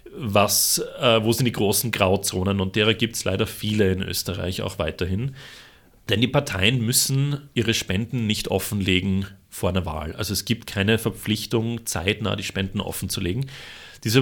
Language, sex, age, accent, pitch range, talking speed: German, male, 30-49, German, 100-120 Hz, 165 wpm